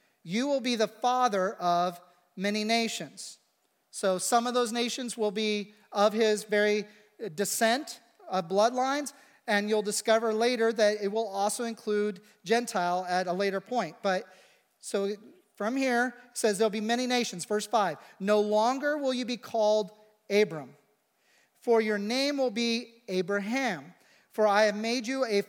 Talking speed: 160 wpm